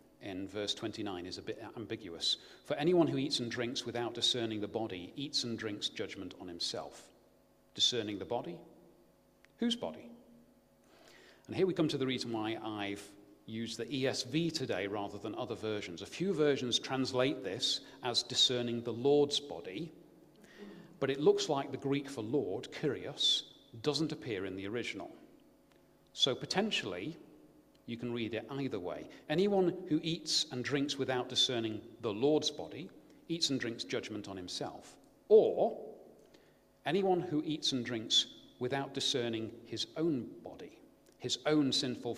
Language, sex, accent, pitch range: English, male, British, 115-150 Hz